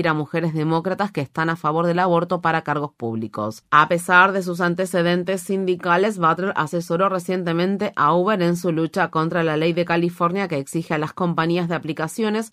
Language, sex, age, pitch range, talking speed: Spanish, female, 30-49, 160-185 Hz, 180 wpm